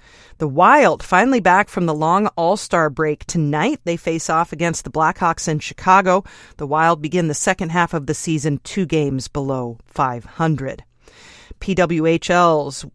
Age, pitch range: 40-59, 145-180 Hz